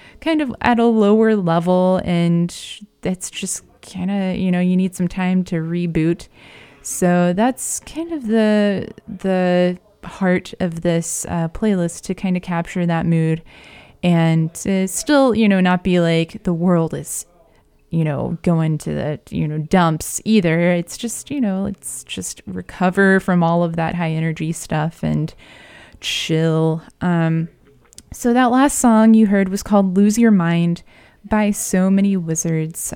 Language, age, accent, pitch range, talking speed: English, 20-39, American, 170-205 Hz, 160 wpm